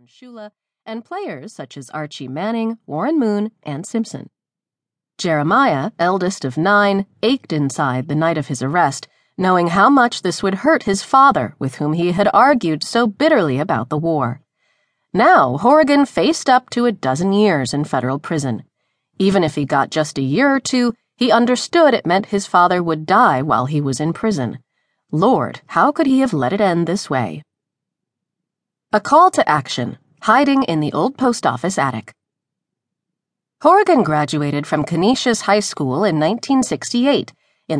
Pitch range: 150-240 Hz